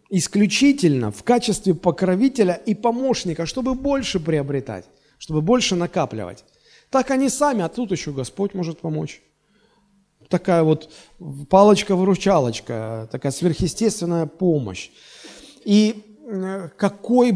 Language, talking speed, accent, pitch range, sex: Russian, 100 wpm, native, 135-185 Hz, male